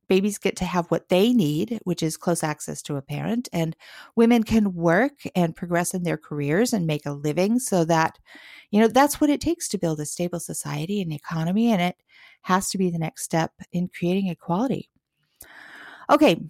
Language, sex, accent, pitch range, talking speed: English, female, American, 180-245 Hz, 195 wpm